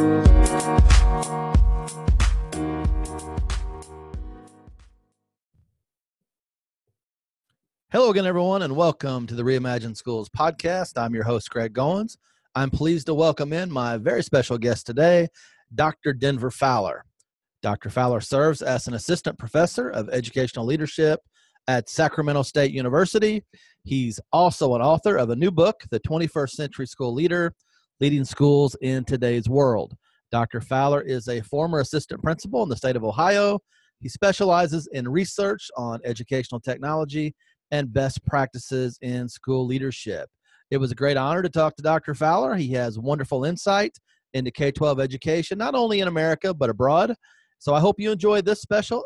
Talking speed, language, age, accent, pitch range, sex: 140 wpm, English, 40-59, American, 120-170 Hz, male